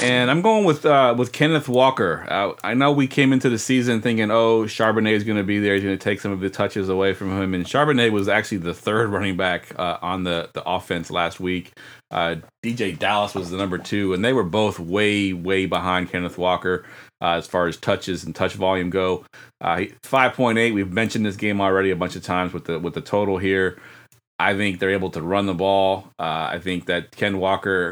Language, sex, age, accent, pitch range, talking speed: English, male, 30-49, American, 90-110 Hz, 230 wpm